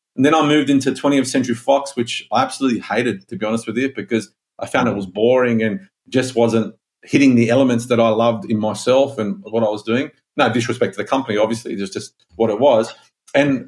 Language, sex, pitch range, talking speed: English, male, 120-170 Hz, 235 wpm